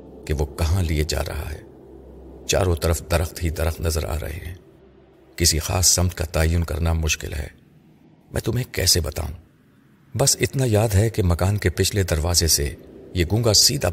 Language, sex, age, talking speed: Urdu, male, 50-69, 175 wpm